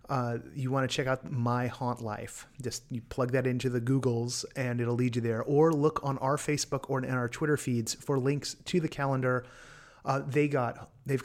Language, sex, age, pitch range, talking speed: English, male, 30-49, 125-150 Hz, 215 wpm